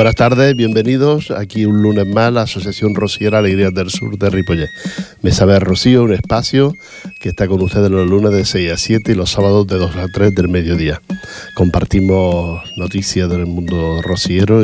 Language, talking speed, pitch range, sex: Portuguese, 185 wpm, 90-105 Hz, male